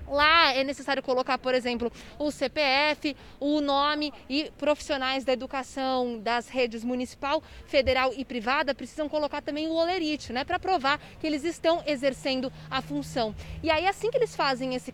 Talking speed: 165 wpm